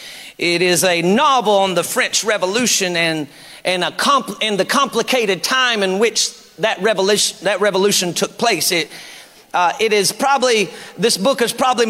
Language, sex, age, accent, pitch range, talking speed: English, male, 40-59, American, 190-250 Hz, 165 wpm